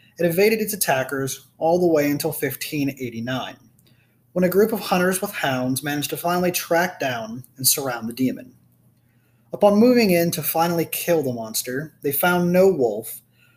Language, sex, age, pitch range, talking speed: English, male, 20-39, 125-175 Hz, 165 wpm